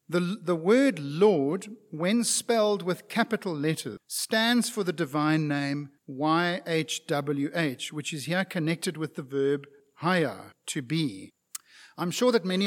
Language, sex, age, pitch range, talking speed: English, male, 50-69, 155-210 Hz, 135 wpm